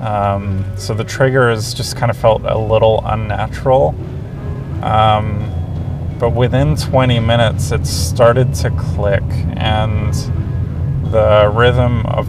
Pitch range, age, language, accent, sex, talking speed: 105-125 Hz, 30-49, English, American, male, 115 wpm